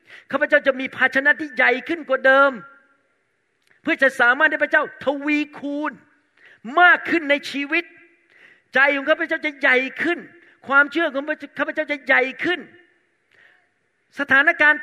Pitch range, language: 230-300 Hz, Thai